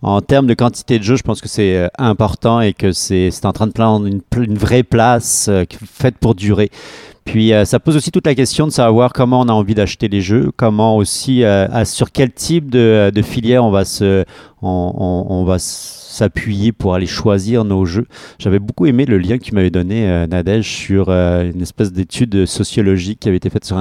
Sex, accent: male, French